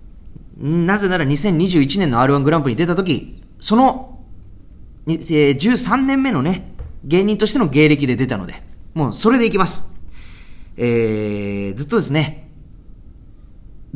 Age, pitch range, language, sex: 30-49, 100-160 Hz, Japanese, male